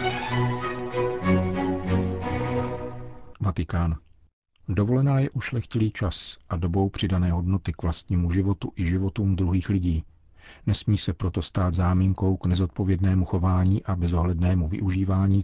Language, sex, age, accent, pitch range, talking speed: Czech, male, 40-59, native, 90-100 Hz, 105 wpm